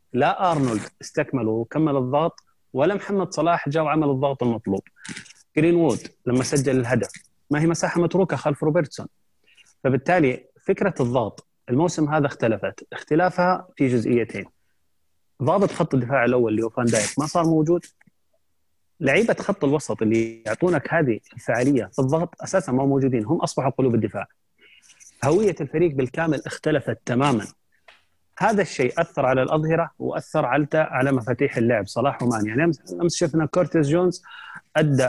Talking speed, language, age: 140 wpm, Arabic, 30-49